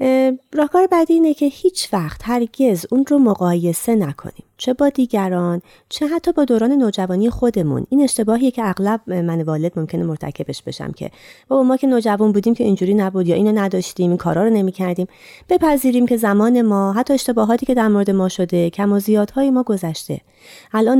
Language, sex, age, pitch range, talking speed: Persian, female, 30-49, 175-245 Hz, 175 wpm